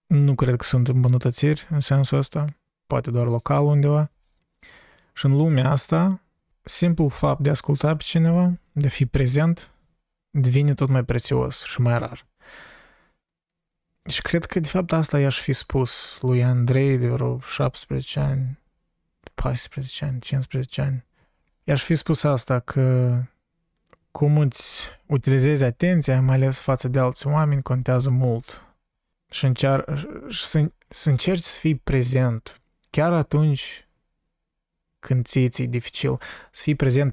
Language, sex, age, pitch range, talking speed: Romanian, male, 20-39, 125-150 Hz, 140 wpm